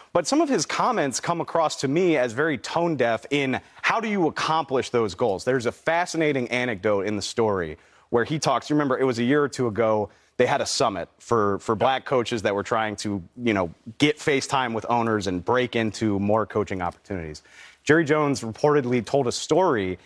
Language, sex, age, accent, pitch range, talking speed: English, male, 30-49, American, 110-145 Hz, 205 wpm